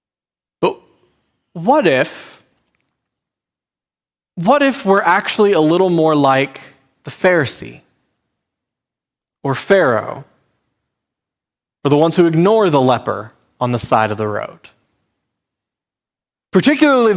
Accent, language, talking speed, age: American, English, 100 wpm, 30-49